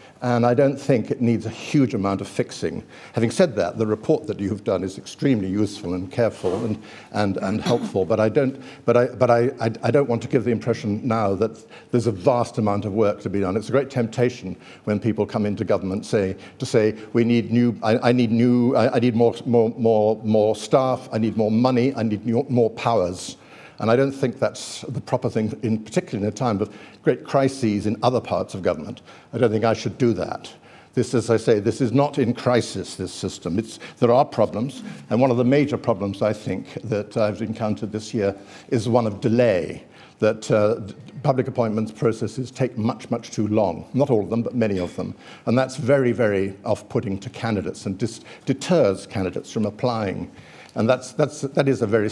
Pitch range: 105-125 Hz